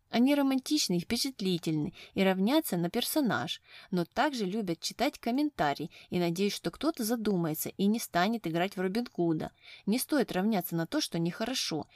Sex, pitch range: female, 175-235 Hz